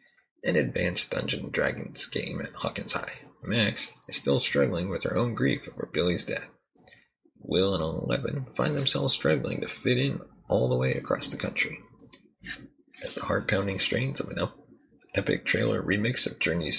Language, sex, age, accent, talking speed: English, male, 30-49, American, 165 wpm